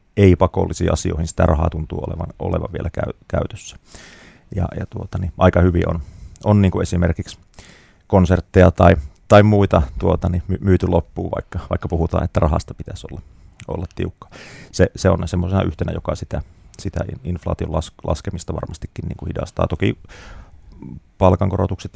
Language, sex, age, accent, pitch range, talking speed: Finnish, male, 30-49, native, 85-95 Hz, 150 wpm